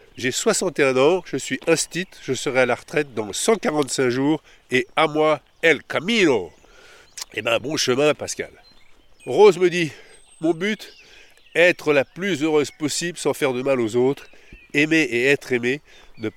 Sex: male